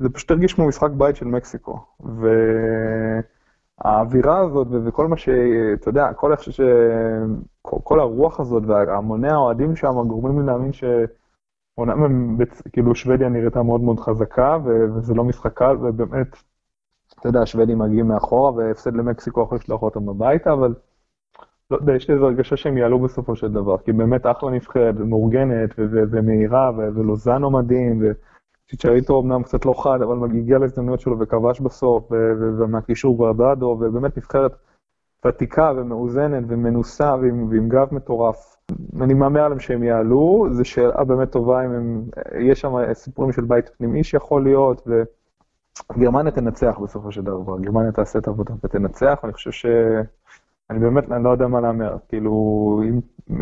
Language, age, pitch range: Hebrew, 20-39, 115-130 Hz